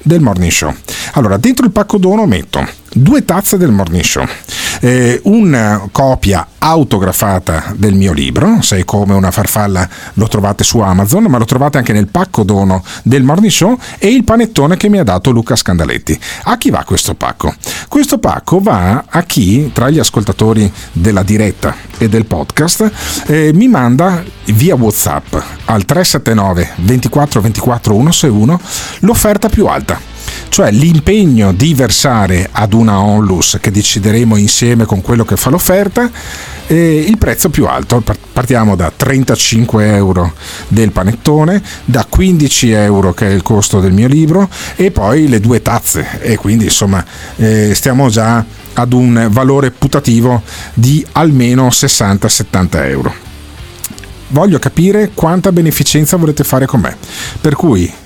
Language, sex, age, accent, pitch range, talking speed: Italian, male, 50-69, native, 100-150 Hz, 145 wpm